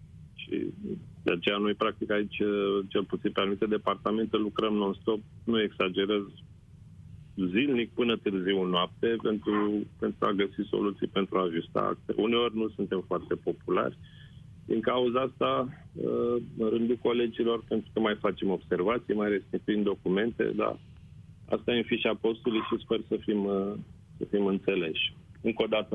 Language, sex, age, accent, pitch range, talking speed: Romanian, male, 40-59, native, 95-110 Hz, 145 wpm